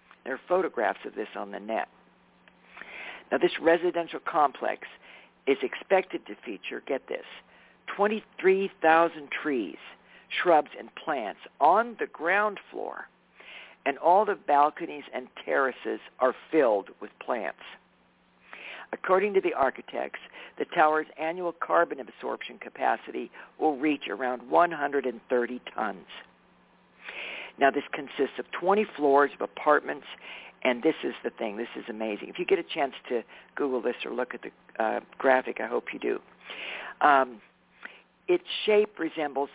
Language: English